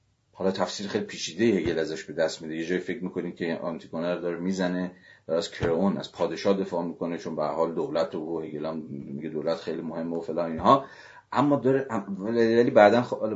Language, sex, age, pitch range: Persian, male, 40-59, 90-110 Hz